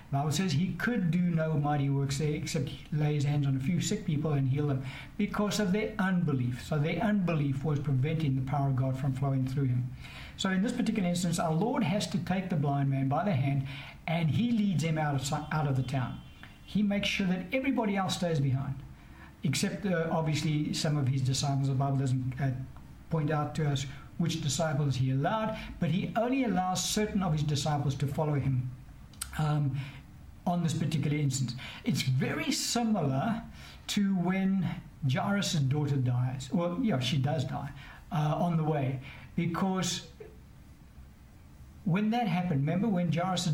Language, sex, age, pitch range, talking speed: English, male, 60-79, 140-180 Hz, 180 wpm